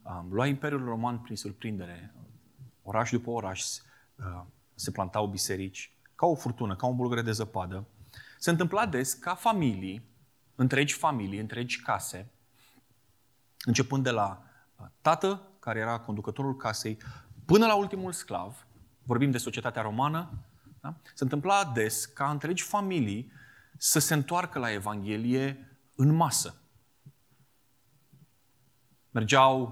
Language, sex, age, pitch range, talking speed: Romanian, male, 20-39, 115-150 Hz, 120 wpm